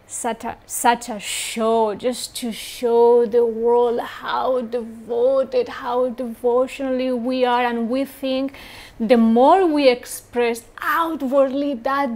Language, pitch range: English, 230-265 Hz